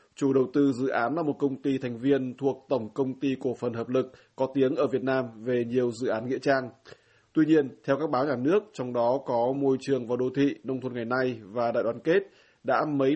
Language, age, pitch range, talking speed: Vietnamese, 20-39, 125-140 Hz, 250 wpm